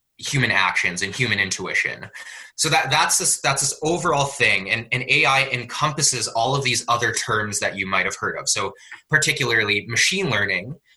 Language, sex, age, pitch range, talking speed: English, male, 20-39, 110-150 Hz, 175 wpm